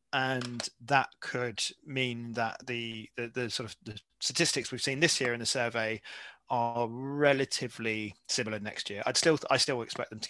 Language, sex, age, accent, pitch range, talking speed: English, male, 20-39, British, 115-130 Hz, 180 wpm